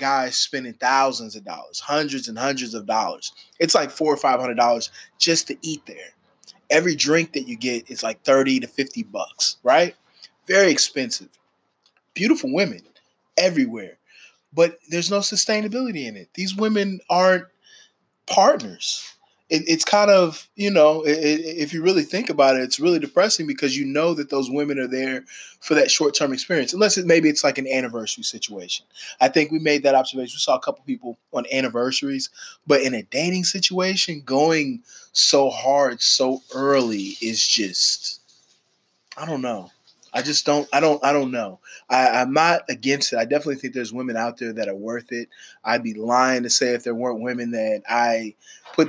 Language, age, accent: English, 20-39, American